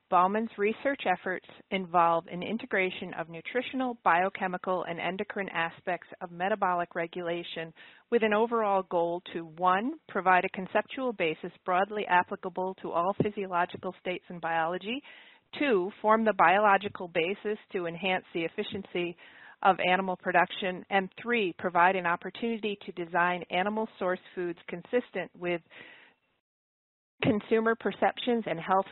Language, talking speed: English, 125 wpm